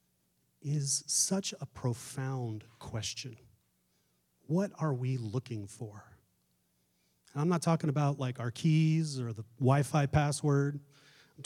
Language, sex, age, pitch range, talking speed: English, male, 30-49, 115-160 Hz, 115 wpm